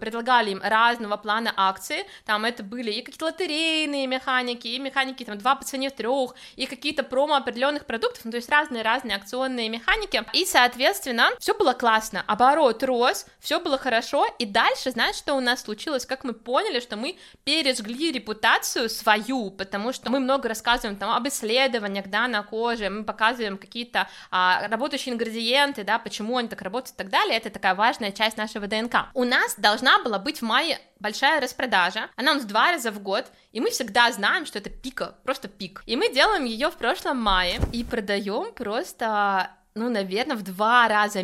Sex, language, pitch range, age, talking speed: female, Russian, 215-265 Hz, 20-39, 180 wpm